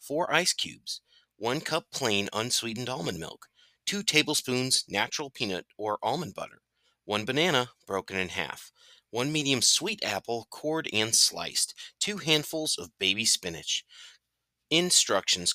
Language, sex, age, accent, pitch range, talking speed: English, male, 30-49, American, 105-150 Hz, 130 wpm